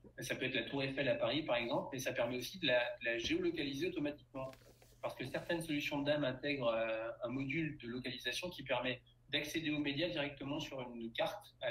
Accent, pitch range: French, 120-145 Hz